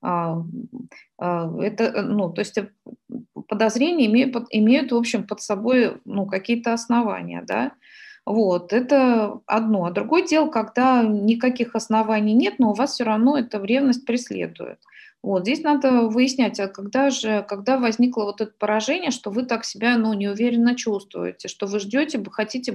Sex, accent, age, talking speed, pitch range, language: female, native, 20-39, 150 wpm, 205-250 Hz, Russian